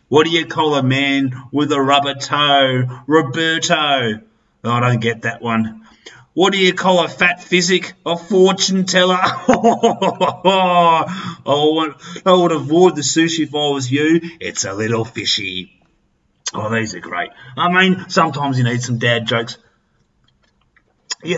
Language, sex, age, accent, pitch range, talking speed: English, male, 30-49, Australian, 115-170 Hz, 145 wpm